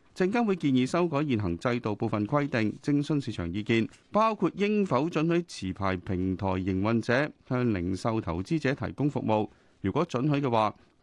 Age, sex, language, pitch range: 30-49, male, Chinese, 110-160 Hz